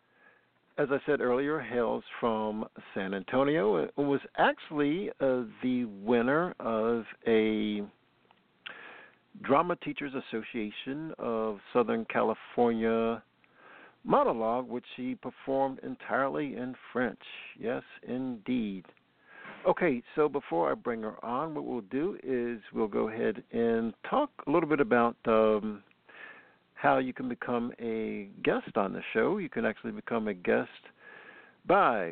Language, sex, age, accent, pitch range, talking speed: English, male, 60-79, American, 105-135 Hz, 125 wpm